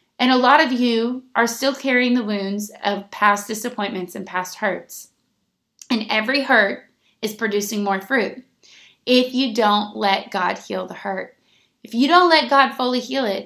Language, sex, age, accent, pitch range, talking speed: English, female, 20-39, American, 205-240 Hz, 175 wpm